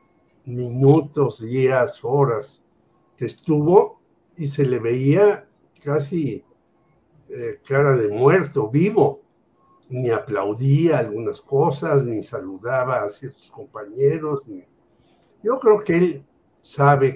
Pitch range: 130-165 Hz